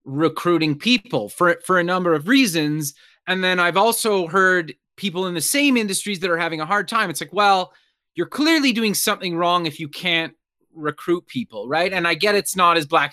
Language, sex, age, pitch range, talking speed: English, male, 30-49, 155-200 Hz, 210 wpm